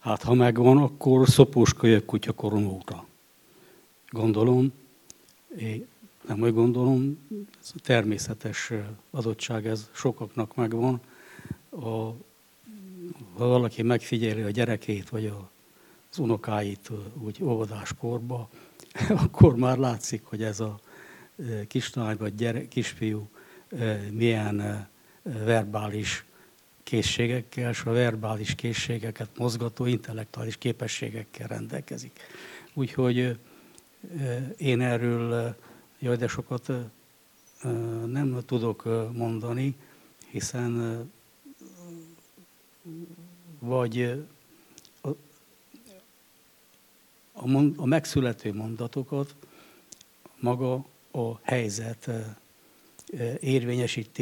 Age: 60-79